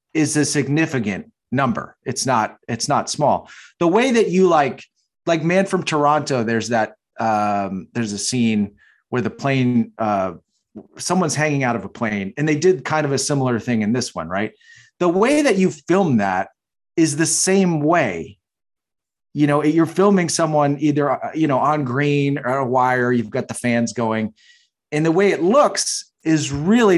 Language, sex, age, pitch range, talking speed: English, male, 30-49, 115-165 Hz, 180 wpm